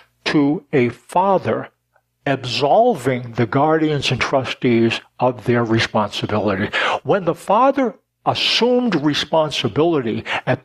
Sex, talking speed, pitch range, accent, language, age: male, 95 wpm, 125-160 Hz, American, English, 60-79